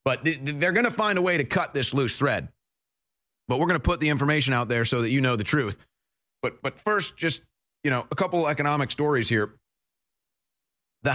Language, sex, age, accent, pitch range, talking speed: English, male, 30-49, American, 120-150 Hz, 215 wpm